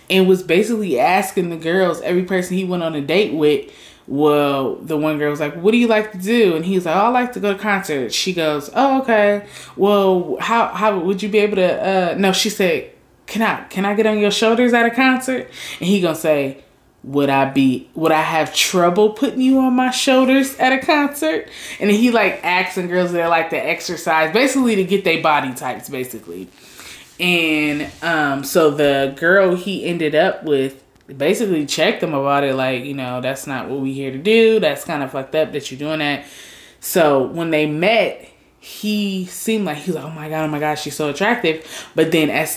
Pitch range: 150-200 Hz